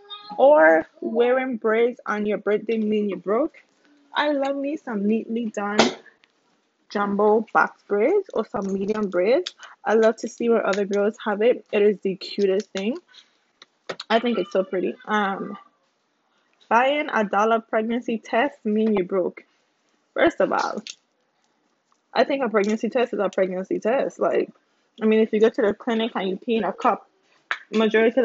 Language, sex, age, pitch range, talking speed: English, female, 20-39, 205-260 Hz, 170 wpm